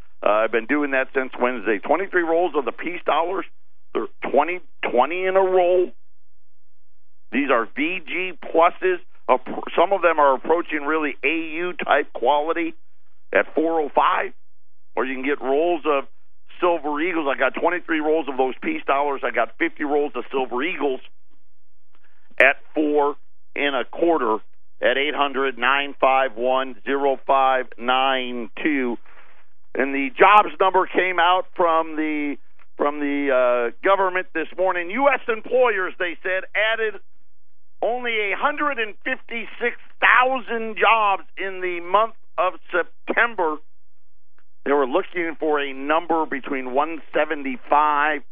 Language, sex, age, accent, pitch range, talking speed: English, male, 50-69, American, 140-190 Hz, 145 wpm